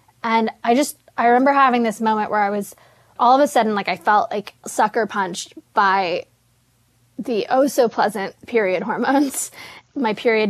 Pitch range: 215-275 Hz